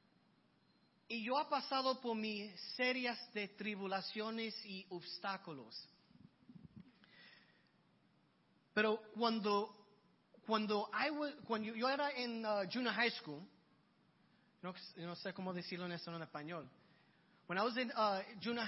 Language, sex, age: Spanish, male, 30-49